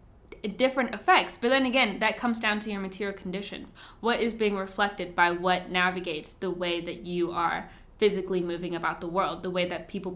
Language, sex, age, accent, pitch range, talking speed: English, female, 10-29, American, 180-210 Hz, 195 wpm